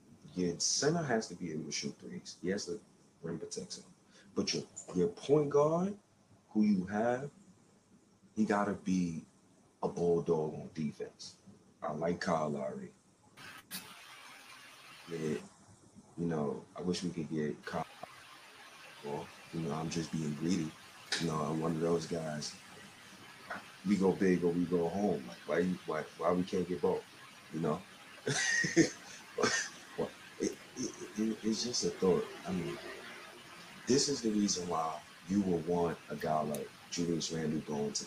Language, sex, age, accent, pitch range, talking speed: English, male, 30-49, American, 80-105 Hz, 150 wpm